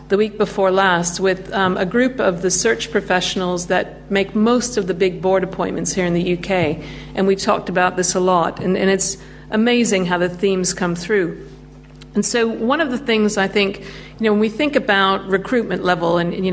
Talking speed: 210 wpm